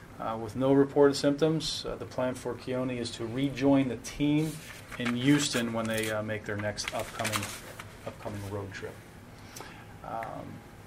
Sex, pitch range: male, 115-140 Hz